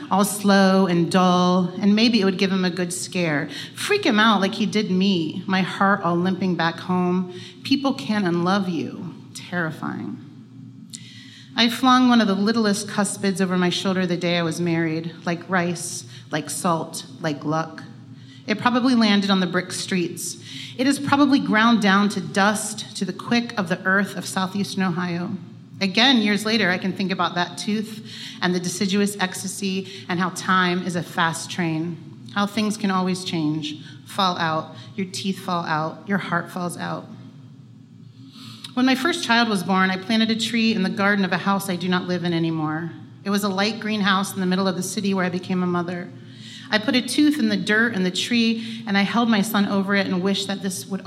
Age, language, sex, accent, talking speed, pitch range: 40-59, English, female, American, 200 wpm, 175-205 Hz